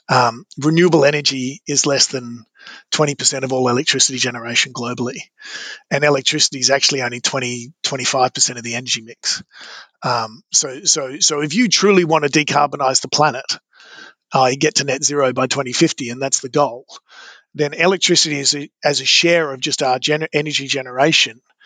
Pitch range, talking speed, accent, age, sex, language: 130-150 Hz, 160 wpm, Australian, 30-49, male, English